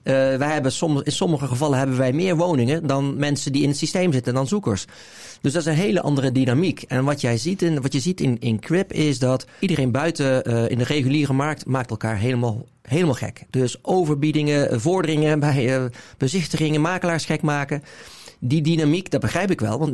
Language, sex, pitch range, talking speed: Dutch, male, 120-155 Hz, 205 wpm